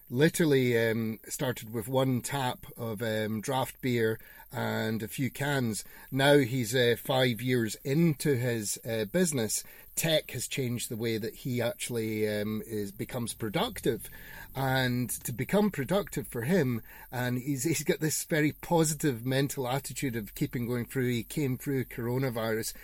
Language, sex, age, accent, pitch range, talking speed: English, male, 30-49, British, 115-140 Hz, 150 wpm